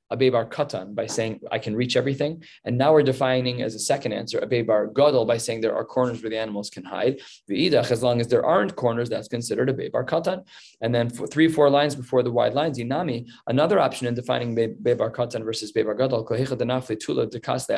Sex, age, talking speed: male, 20-39, 195 wpm